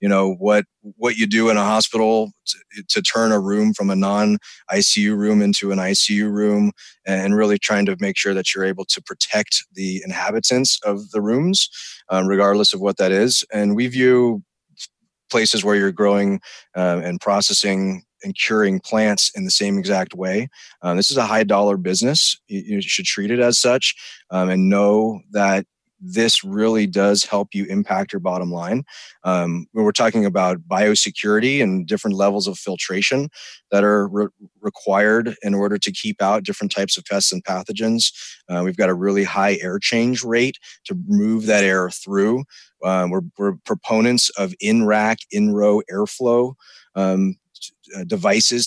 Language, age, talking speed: English, 30-49, 170 wpm